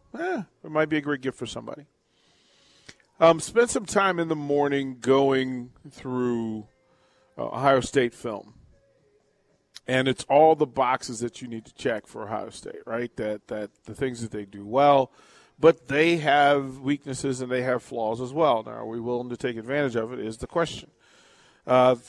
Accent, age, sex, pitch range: American, 40-59, male, 120-155 Hz